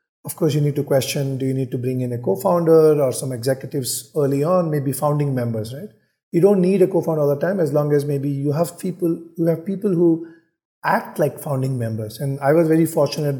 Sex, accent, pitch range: male, Indian, 130-160 Hz